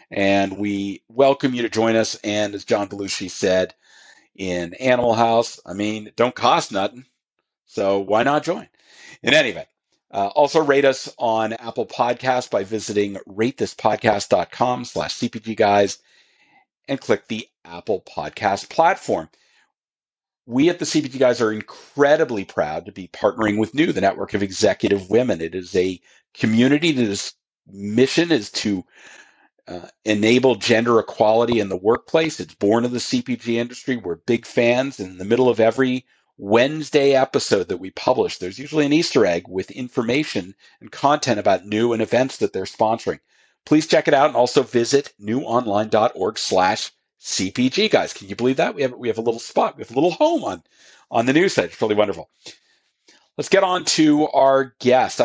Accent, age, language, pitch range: American, 50-69, English, 100-135 Hz